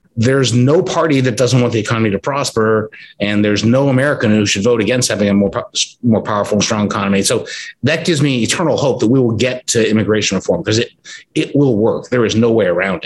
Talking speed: 220 wpm